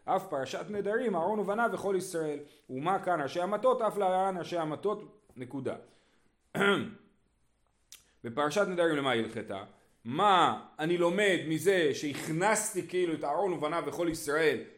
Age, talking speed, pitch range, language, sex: 30-49, 130 wpm, 150-210 Hz, Hebrew, male